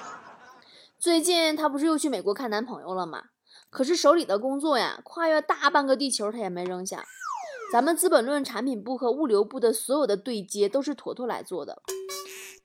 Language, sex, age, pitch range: Chinese, female, 20-39, 205-330 Hz